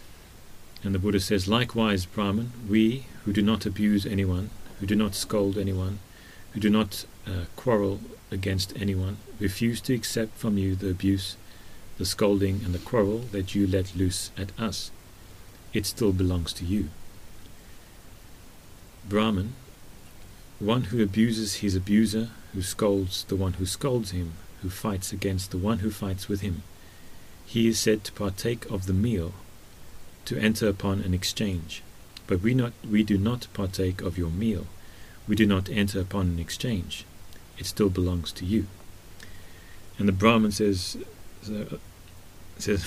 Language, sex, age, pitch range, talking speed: English, male, 40-59, 95-110 Hz, 155 wpm